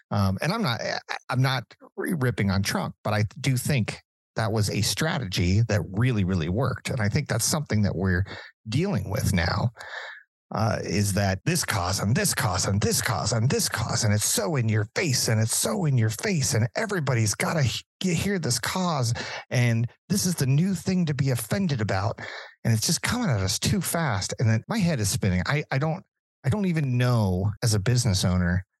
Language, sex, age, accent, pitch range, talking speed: English, male, 40-59, American, 100-130 Hz, 210 wpm